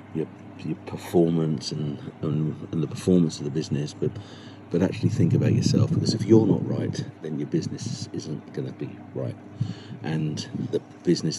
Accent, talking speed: British, 175 wpm